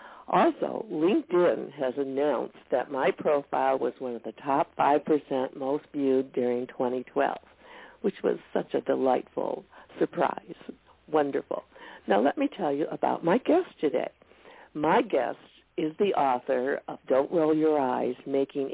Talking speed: 140 wpm